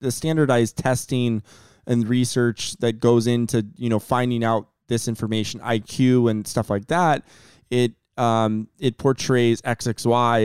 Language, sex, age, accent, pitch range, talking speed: English, male, 20-39, American, 105-125 Hz, 140 wpm